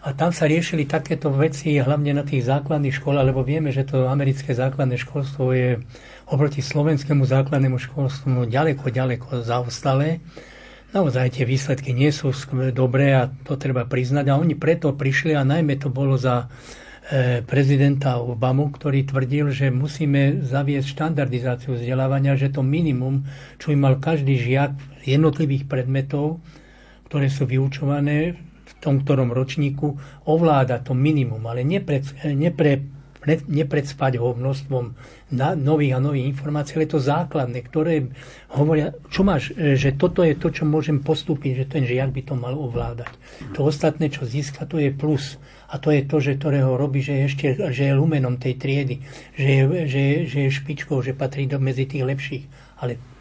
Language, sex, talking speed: Slovak, male, 155 wpm